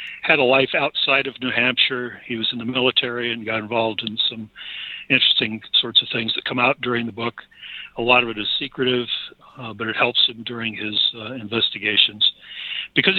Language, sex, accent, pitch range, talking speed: English, male, American, 110-125 Hz, 195 wpm